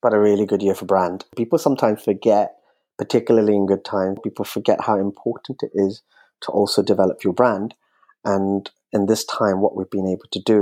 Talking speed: 200 wpm